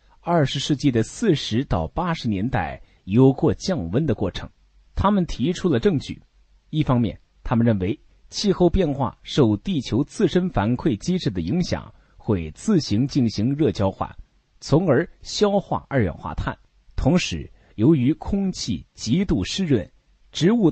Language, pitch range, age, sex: Chinese, 100-165 Hz, 30-49, male